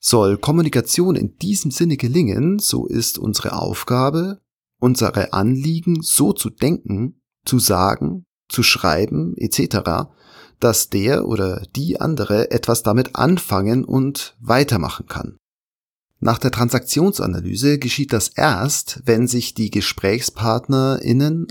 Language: German